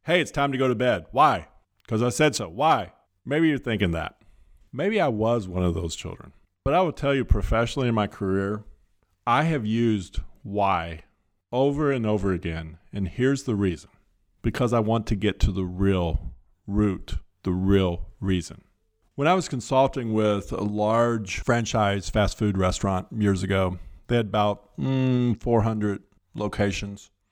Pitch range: 95-120 Hz